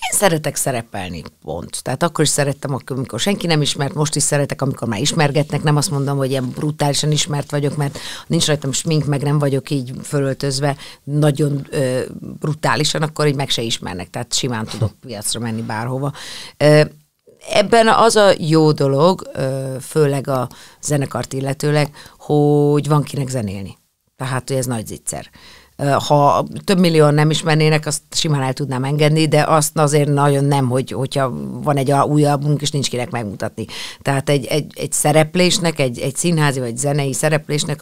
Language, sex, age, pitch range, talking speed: Hungarian, female, 50-69, 135-150 Hz, 160 wpm